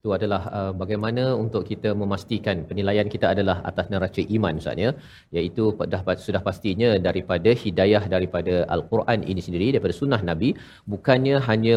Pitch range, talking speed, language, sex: 105-125 Hz, 145 wpm, Malayalam, male